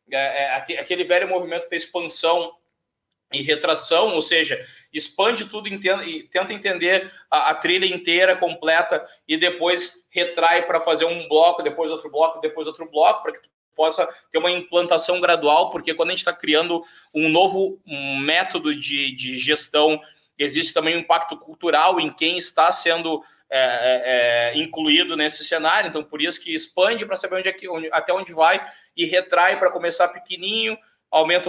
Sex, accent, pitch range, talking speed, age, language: male, Brazilian, 155-185 Hz, 170 wpm, 20-39, Portuguese